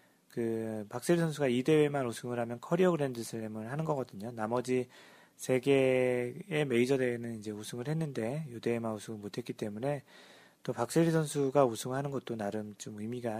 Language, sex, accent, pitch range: Korean, male, native, 115-145 Hz